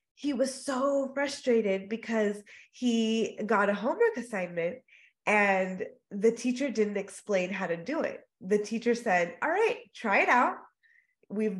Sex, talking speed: female, 145 wpm